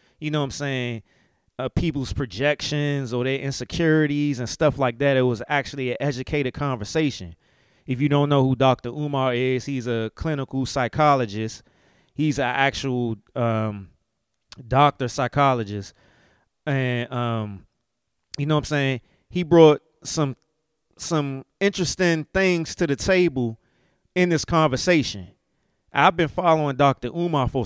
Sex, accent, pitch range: male, American, 115-145 Hz